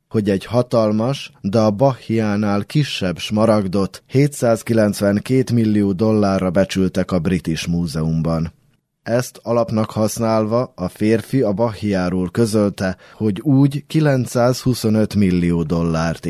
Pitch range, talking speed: 90-115 Hz, 105 wpm